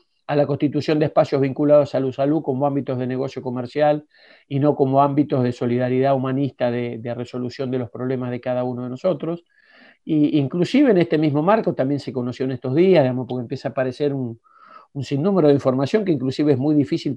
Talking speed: 205 wpm